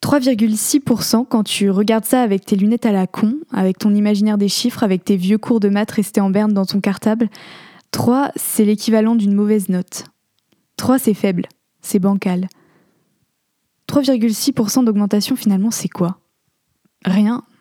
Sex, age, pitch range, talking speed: female, 20-39, 205-235 Hz, 150 wpm